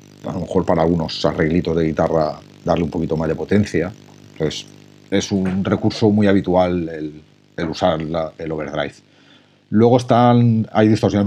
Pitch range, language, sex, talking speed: 80-105 Hz, Spanish, male, 160 wpm